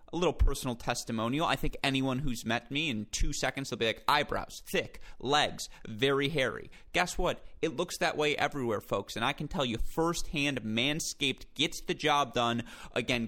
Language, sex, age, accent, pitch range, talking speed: English, male, 30-49, American, 115-155 Hz, 185 wpm